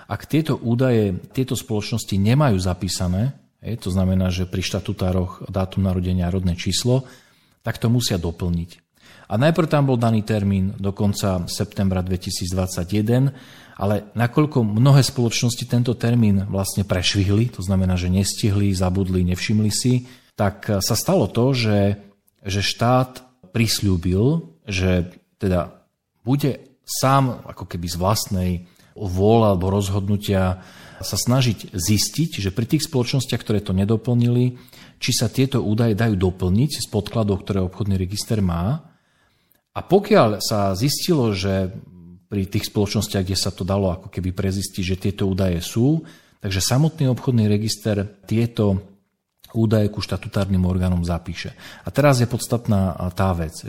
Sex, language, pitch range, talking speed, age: male, Slovak, 95-120 Hz, 135 wpm, 40-59